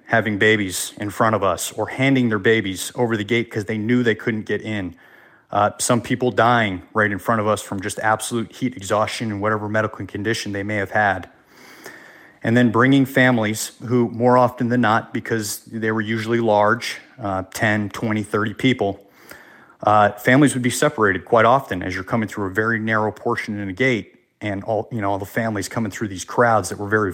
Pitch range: 105-120 Hz